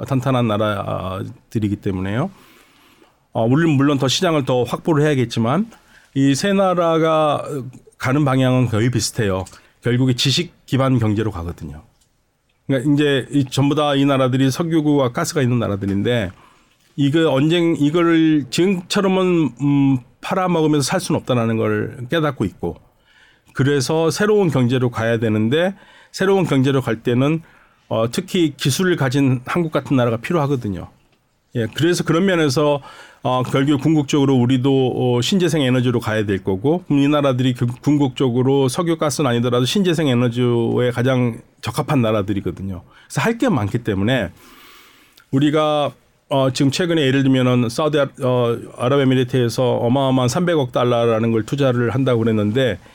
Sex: male